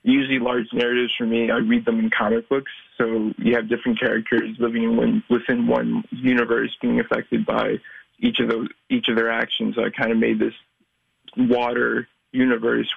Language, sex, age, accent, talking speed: English, male, 20-39, American, 180 wpm